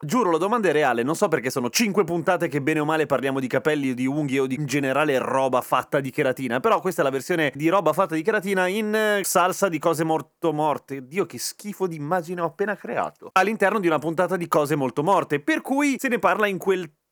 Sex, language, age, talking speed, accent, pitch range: male, Italian, 30-49, 235 wpm, native, 130-185 Hz